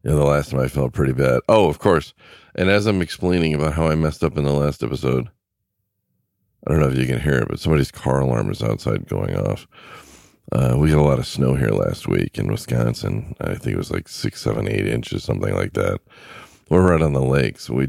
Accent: American